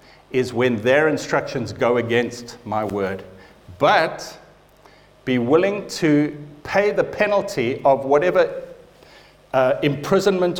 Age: 50-69